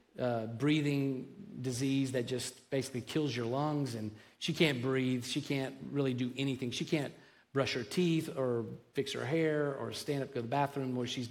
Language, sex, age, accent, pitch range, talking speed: English, male, 40-59, American, 125-145 Hz, 190 wpm